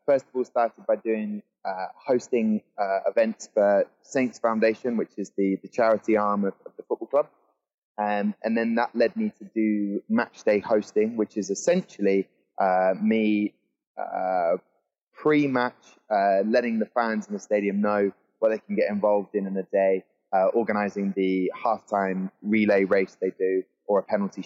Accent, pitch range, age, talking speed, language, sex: British, 100-125 Hz, 20-39, 170 wpm, English, male